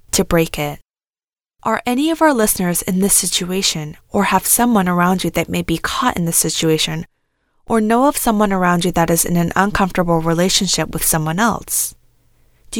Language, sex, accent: English, female, American